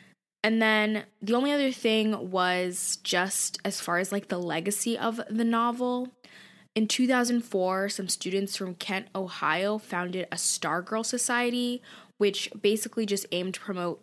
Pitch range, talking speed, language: 180-225 Hz, 145 wpm, English